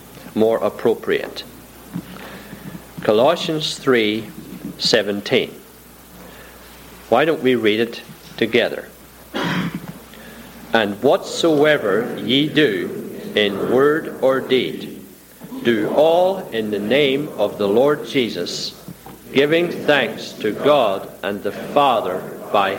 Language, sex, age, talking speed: English, male, 50-69, 90 wpm